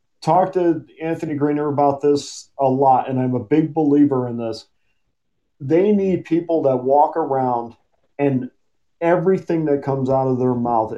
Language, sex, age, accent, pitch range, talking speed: English, male, 40-59, American, 125-150 Hz, 160 wpm